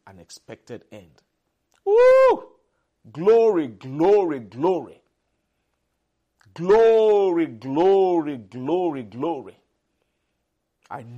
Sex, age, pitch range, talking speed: male, 50-69, 120-195 Hz, 60 wpm